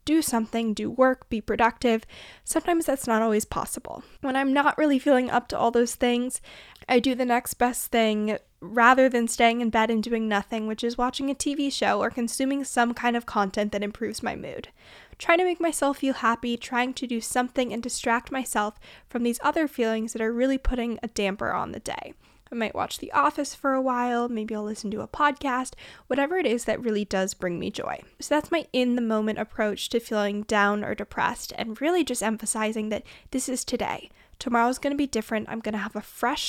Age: 10-29